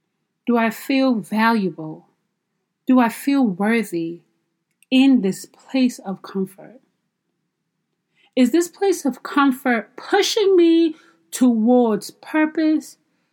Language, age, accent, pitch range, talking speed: English, 40-59, American, 195-270 Hz, 100 wpm